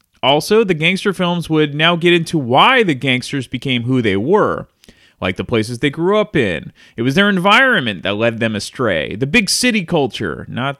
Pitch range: 125-195 Hz